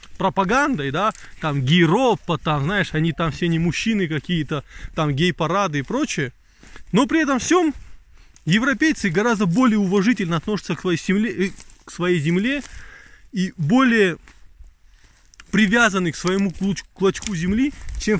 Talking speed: 120 wpm